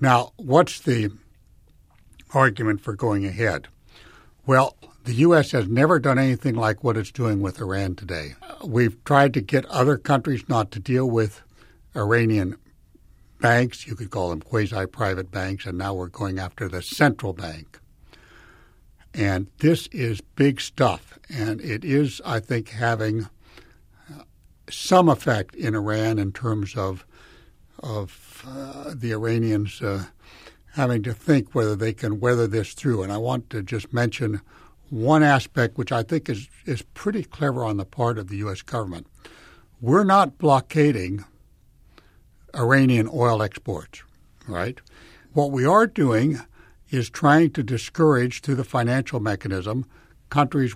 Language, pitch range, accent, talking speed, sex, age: English, 100-130 Hz, American, 145 wpm, male, 60-79